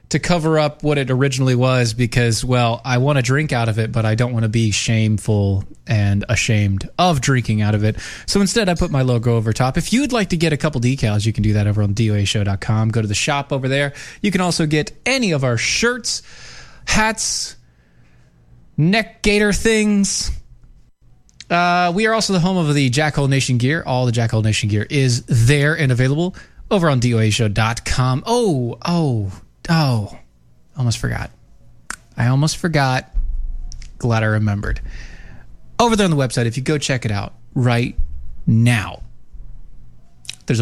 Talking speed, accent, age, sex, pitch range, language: 175 wpm, American, 20-39, male, 105-155 Hz, English